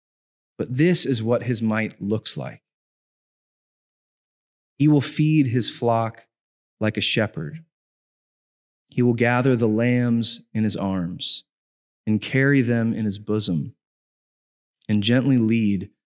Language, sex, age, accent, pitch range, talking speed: English, male, 30-49, American, 105-125 Hz, 125 wpm